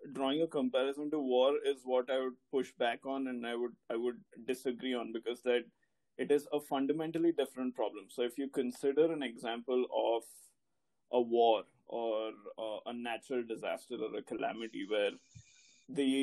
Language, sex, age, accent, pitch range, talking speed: Hindi, male, 20-39, native, 125-145 Hz, 170 wpm